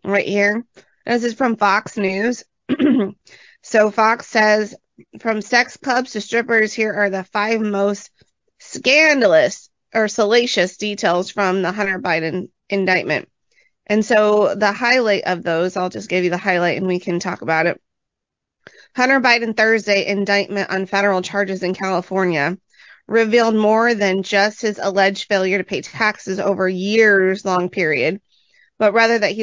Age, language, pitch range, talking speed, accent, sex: 30-49, English, 185-225 Hz, 150 wpm, American, female